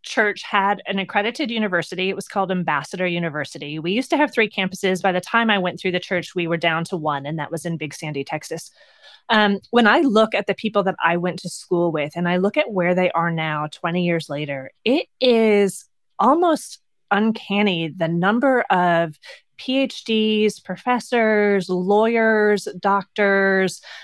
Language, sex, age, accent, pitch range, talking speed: English, female, 30-49, American, 170-220 Hz, 175 wpm